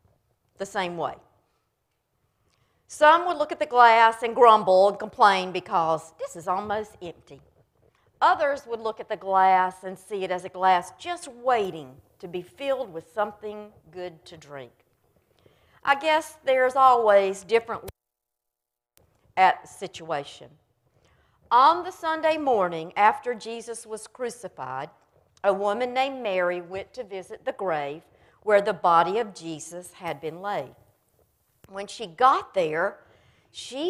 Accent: American